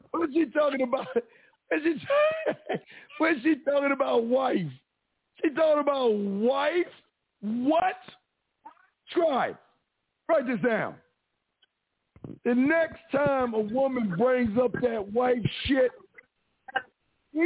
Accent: American